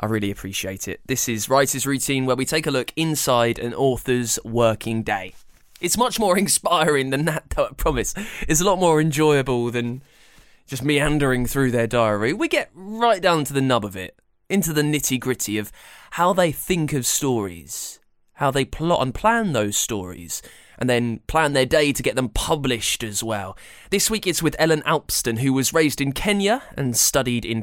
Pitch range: 120-155 Hz